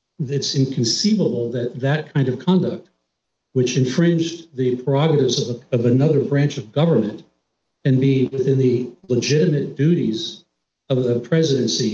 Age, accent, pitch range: 60-79, American, 120-140 Hz